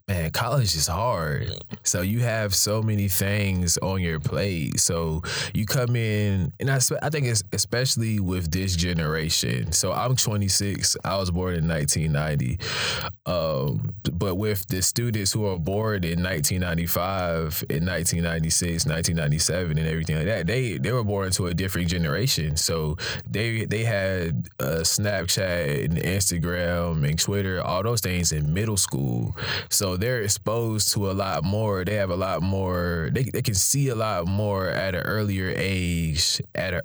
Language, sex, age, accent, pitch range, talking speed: English, male, 20-39, American, 85-105 Hz, 165 wpm